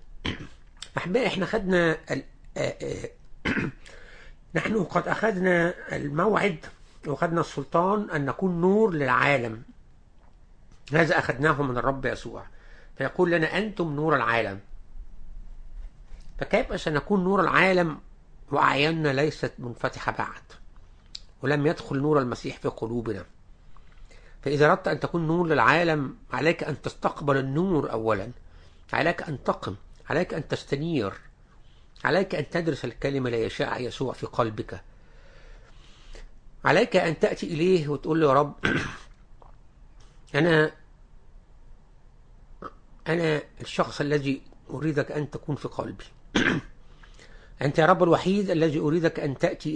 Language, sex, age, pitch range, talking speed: English, male, 60-79, 120-165 Hz, 105 wpm